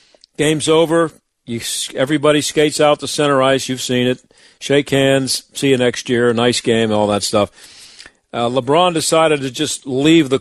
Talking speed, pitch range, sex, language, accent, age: 175 wpm, 120-150 Hz, male, English, American, 50-69